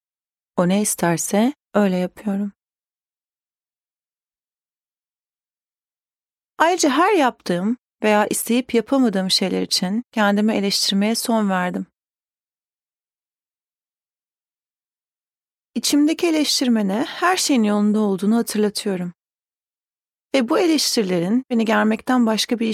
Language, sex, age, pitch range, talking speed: Turkish, female, 30-49, 195-245 Hz, 80 wpm